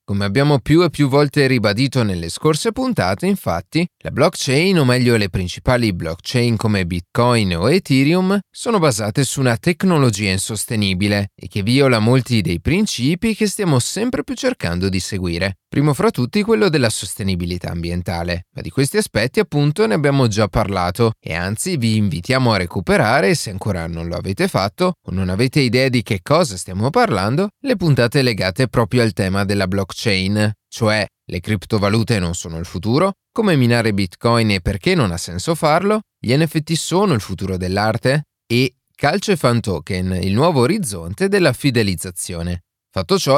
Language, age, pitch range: Italian, 30-49, 95-155 Hz